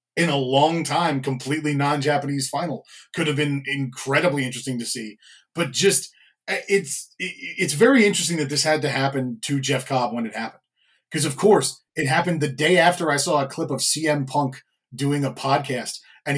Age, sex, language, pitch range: 30-49, male, English, 140-230 Hz